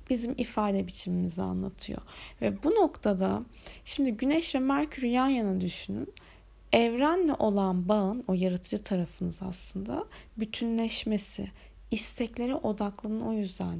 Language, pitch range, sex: Turkish, 195-255 Hz, female